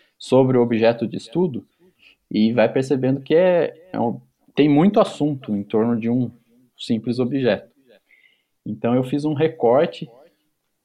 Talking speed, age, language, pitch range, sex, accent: 125 wpm, 20-39, Portuguese, 120-150 Hz, male, Brazilian